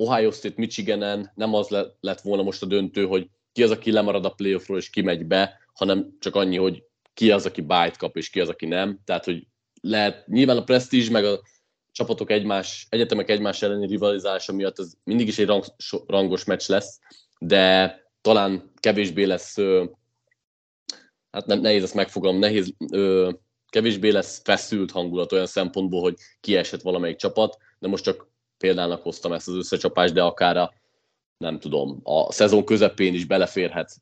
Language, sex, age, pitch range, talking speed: Hungarian, male, 20-39, 95-115 Hz, 165 wpm